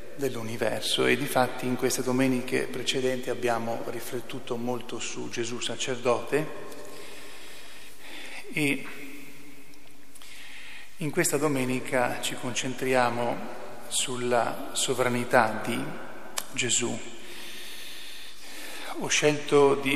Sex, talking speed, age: male, 80 wpm, 40-59